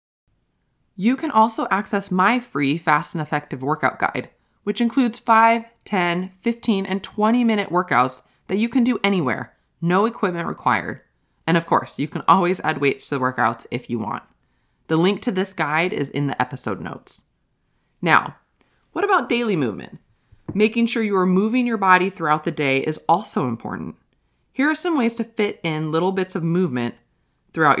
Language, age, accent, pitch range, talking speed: English, 20-39, American, 155-220 Hz, 175 wpm